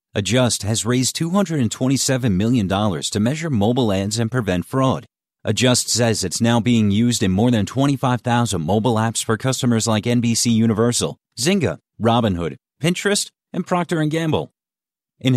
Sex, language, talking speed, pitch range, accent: male, English, 145 wpm, 110-145 Hz, American